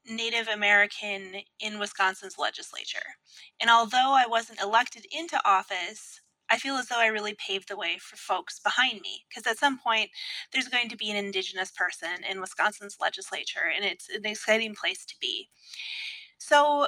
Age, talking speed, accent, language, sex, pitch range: 30-49, 165 wpm, American, English, female, 205-250 Hz